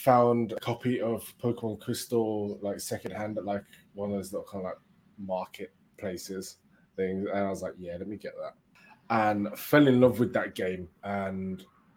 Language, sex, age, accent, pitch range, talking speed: English, male, 20-39, British, 100-120 Hz, 180 wpm